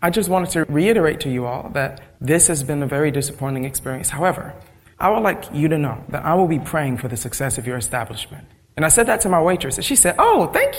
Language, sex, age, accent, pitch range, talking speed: English, male, 30-49, American, 130-175 Hz, 255 wpm